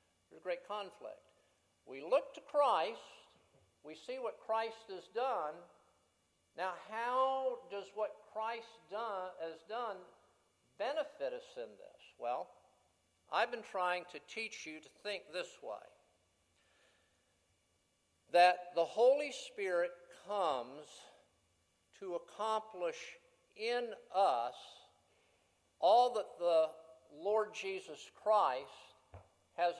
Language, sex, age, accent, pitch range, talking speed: English, male, 60-79, American, 175-270 Hz, 105 wpm